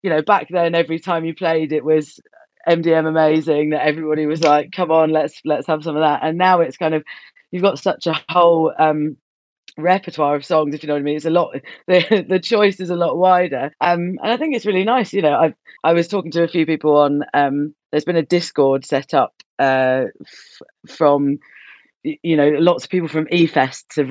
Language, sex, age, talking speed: English, female, 30-49, 225 wpm